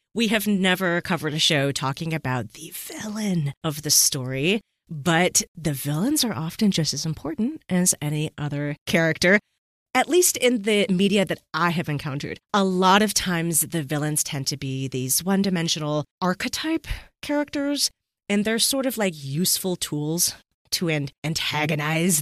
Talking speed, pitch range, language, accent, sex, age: 150 wpm, 150-215 Hz, English, American, female, 30-49